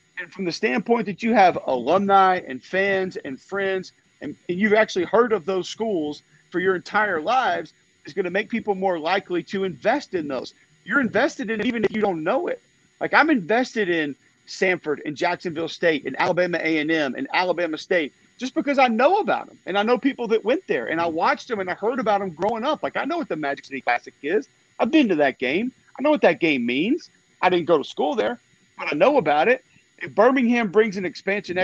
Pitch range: 175-235 Hz